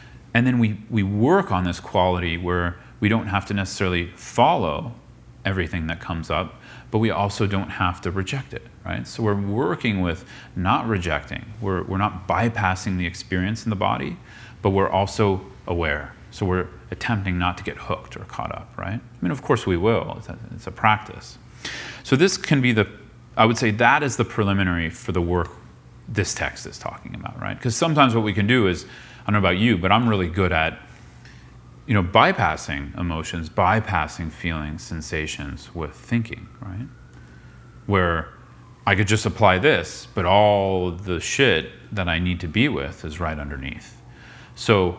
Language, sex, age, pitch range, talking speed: English, male, 30-49, 85-115 Hz, 185 wpm